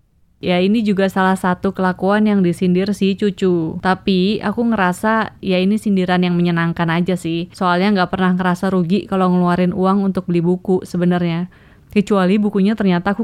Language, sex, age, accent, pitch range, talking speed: Indonesian, female, 20-39, native, 175-210 Hz, 165 wpm